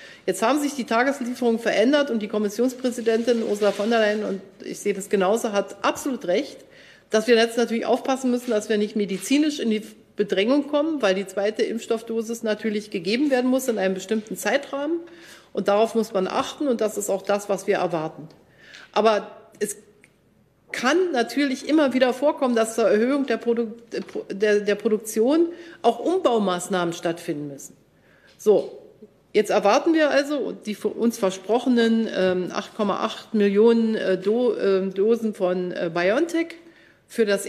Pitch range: 200-260 Hz